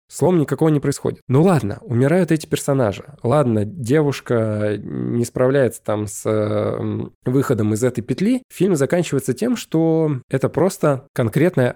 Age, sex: 20-39, male